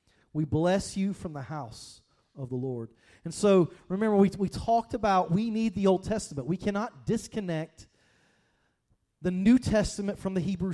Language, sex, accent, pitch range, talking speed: English, male, American, 155-205 Hz, 170 wpm